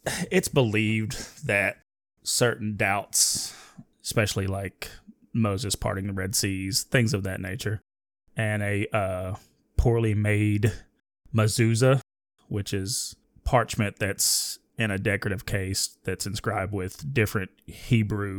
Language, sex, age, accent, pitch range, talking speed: English, male, 20-39, American, 100-115 Hz, 115 wpm